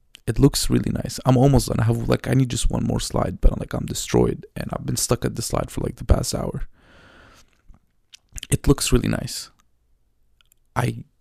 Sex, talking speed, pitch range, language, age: male, 205 wpm, 75-125 Hz, English, 20-39